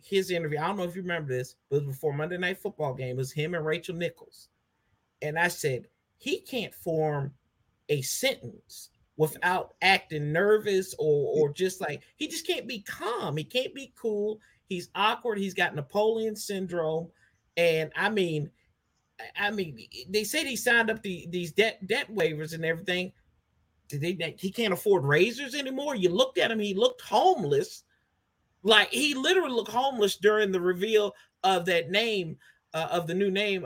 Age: 40-59